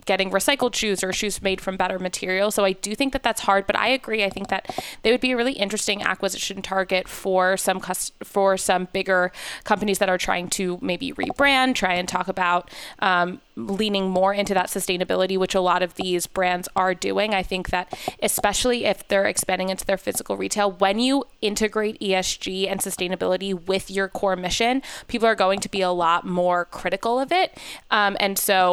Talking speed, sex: 195 wpm, female